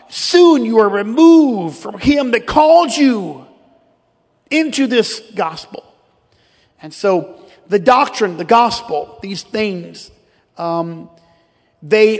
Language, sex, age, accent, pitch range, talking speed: English, male, 40-59, American, 190-255 Hz, 110 wpm